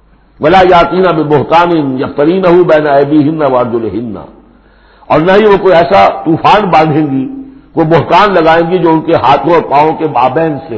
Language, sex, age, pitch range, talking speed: Urdu, male, 60-79, 115-170 Hz, 200 wpm